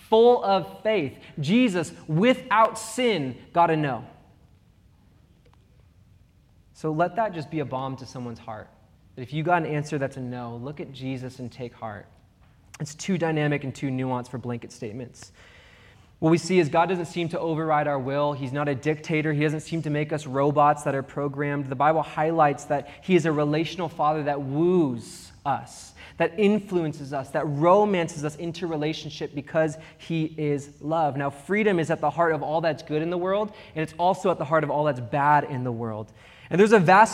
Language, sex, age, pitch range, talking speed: English, male, 20-39, 140-180 Hz, 195 wpm